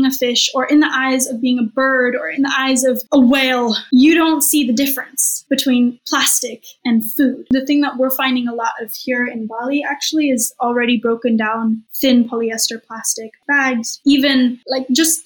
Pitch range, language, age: 250-285 Hz, English, 10-29